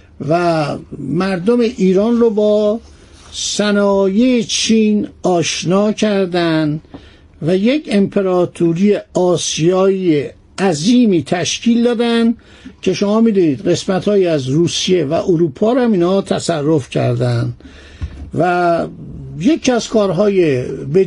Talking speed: 100 wpm